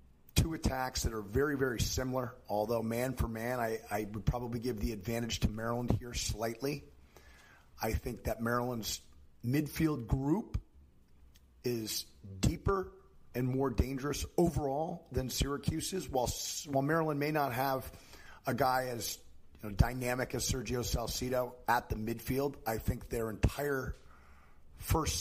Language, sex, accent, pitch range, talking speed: English, male, American, 90-130 Hz, 140 wpm